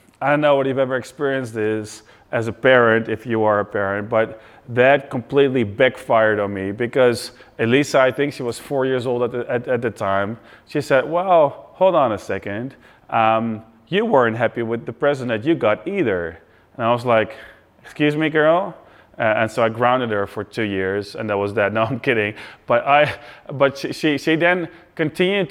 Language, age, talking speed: Dutch, 30-49, 200 wpm